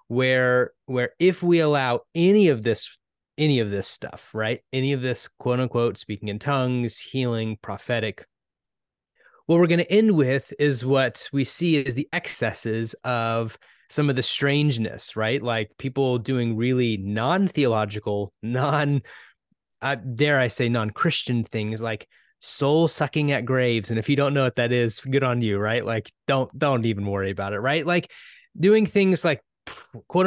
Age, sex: 20-39, male